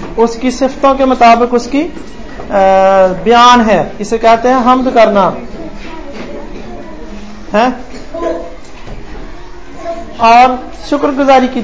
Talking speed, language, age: 80 wpm, Hindi, 40-59